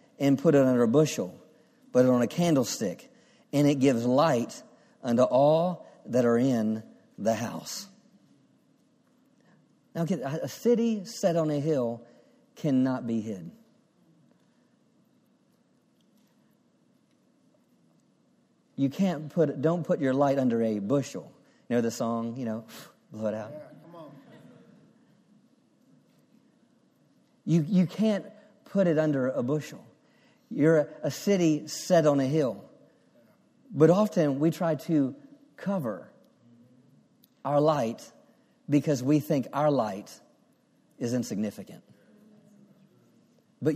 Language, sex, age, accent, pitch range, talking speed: English, male, 40-59, American, 125-195 Hz, 110 wpm